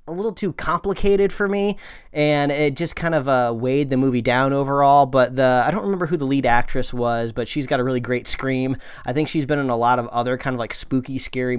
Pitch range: 120-150 Hz